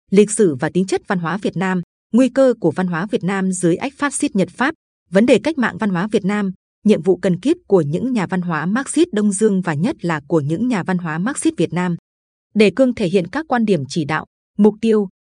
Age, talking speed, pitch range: 20-39, 250 wpm, 180-235 Hz